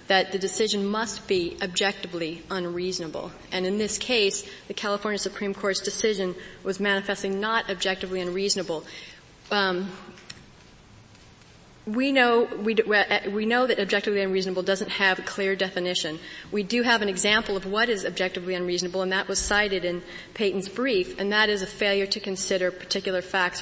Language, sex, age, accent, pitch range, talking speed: English, female, 30-49, American, 185-220 Hz, 160 wpm